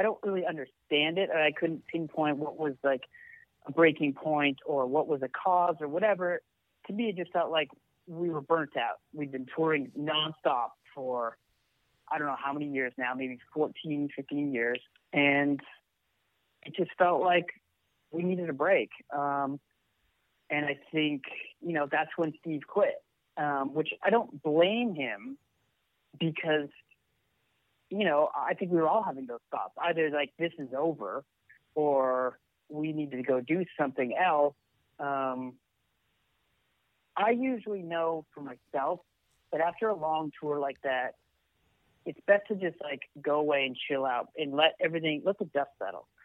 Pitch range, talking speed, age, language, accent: 140-175 Hz, 165 wpm, 30-49, English, American